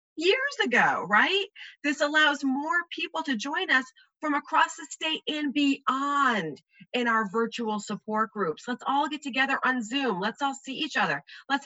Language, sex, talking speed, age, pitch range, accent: English, female, 170 wpm, 40-59, 205-280 Hz, American